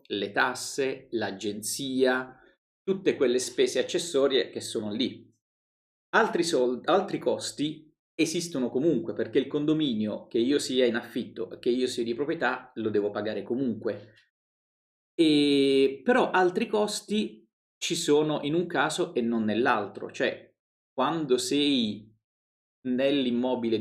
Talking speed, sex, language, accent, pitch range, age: 120 wpm, male, Italian, native, 115-150 Hz, 40-59